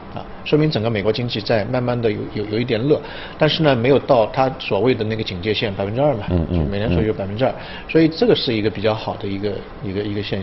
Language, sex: Chinese, male